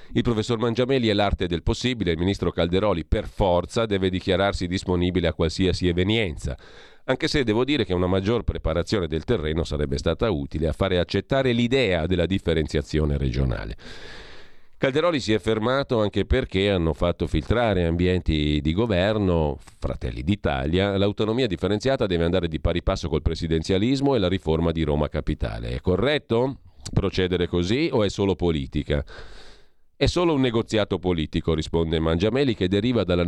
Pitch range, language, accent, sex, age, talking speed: 80-105 Hz, Italian, native, male, 40-59, 155 wpm